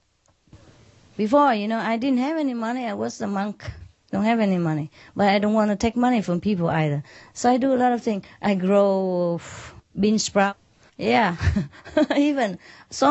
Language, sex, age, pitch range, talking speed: English, female, 30-49, 165-230 Hz, 185 wpm